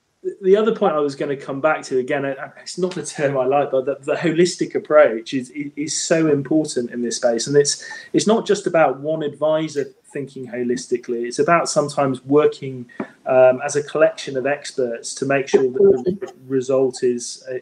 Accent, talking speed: British, 190 wpm